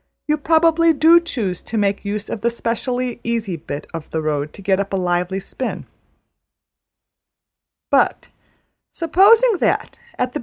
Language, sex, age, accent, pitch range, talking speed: English, female, 40-59, American, 165-255 Hz, 150 wpm